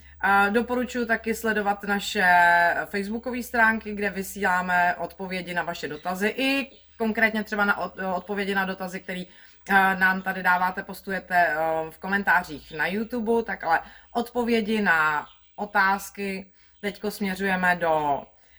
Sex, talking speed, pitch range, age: female, 115 wpm, 180-225 Hz, 30-49